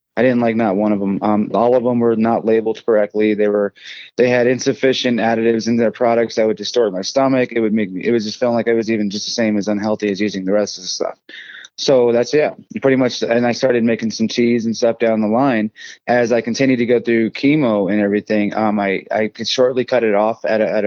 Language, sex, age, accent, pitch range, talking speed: English, male, 20-39, American, 105-125 Hz, 255 wpm